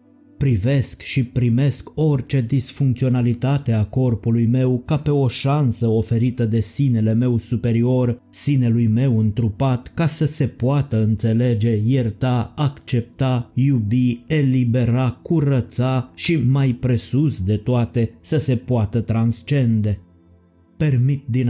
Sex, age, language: male, 20-39, Romanian